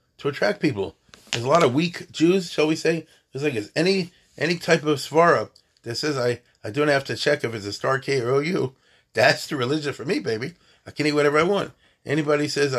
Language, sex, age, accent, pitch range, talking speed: English, male, 40-59, American, 115-160 Hz, 225 wpm